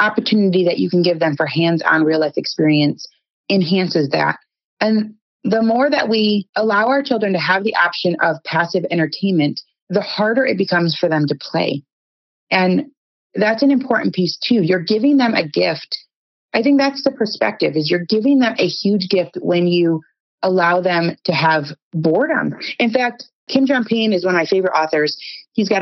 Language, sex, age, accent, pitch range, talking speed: English, female, 30-49, American, 165-215 Hz, 180 wpm